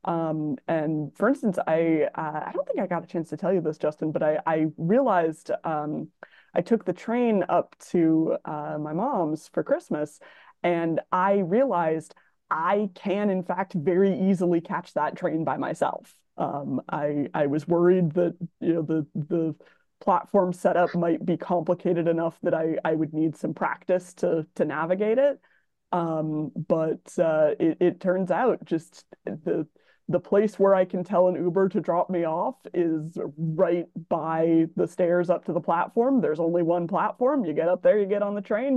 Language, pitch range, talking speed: English, 160-195 Hz, 185 wpm